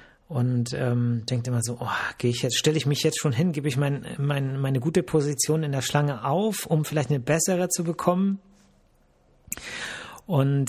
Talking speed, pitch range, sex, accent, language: 190 wpm, 120-155 Hz, male, German, German